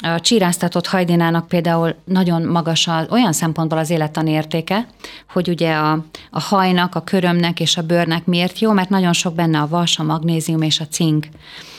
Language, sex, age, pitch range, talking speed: Hungarian, female, 30-49, 160-180 Hz, 180 wpm